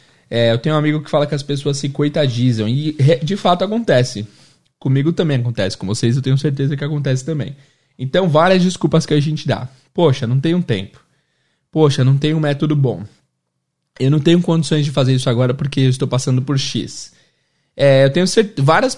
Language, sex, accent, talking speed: Portuguese, male, Brazilian, 180 wpm